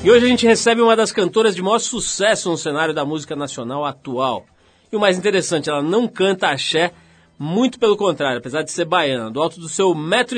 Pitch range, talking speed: 150-200 Hz, 215 wpm